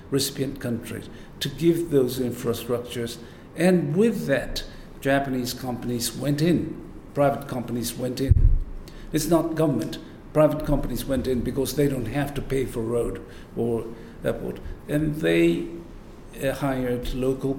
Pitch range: 115-150 Hz